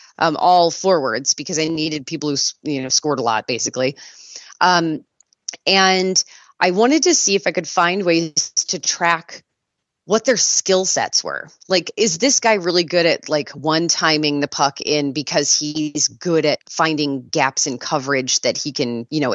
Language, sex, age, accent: English, female, 30-49, American